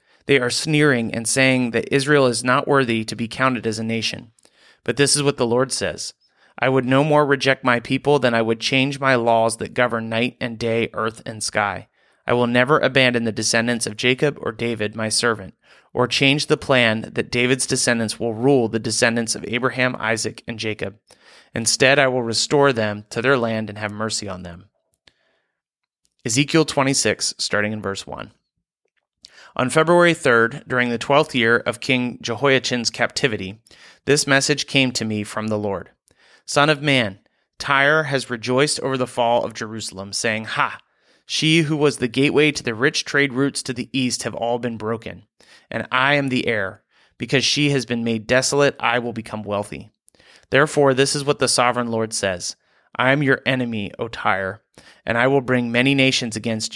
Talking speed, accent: 185 wpm, American